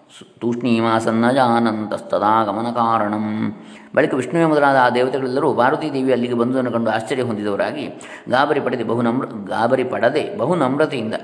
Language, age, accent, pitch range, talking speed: Kannada, 20-39, native, 110-135 Hz, 115 wpm